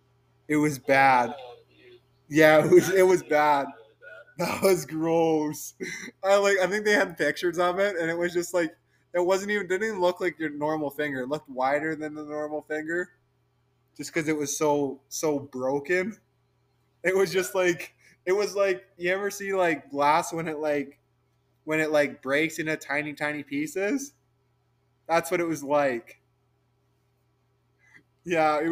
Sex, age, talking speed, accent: male, 20-39, 165 wpm, American